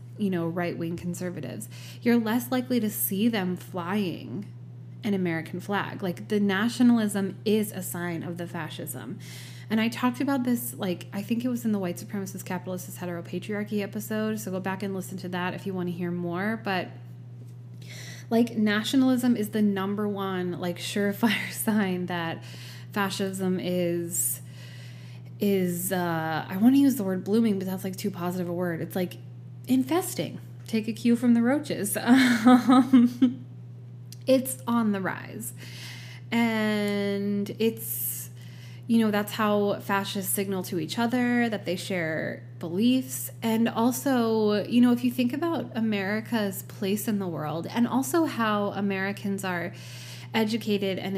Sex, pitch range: female, 160-220 Hz